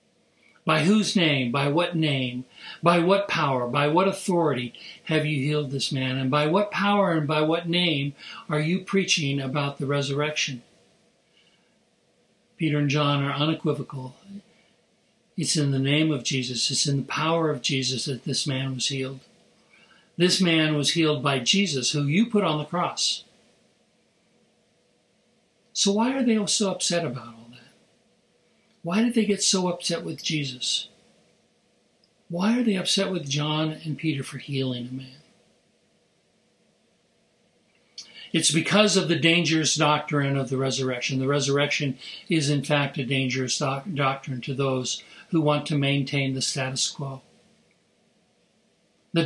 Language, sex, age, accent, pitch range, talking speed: English, male, 60-79, American, 140-180 Hz, 145 wpm